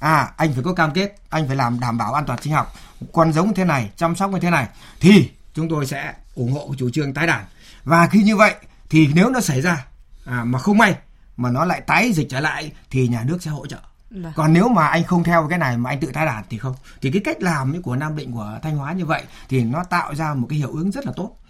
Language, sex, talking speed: Vietnamese, male, 275 wpm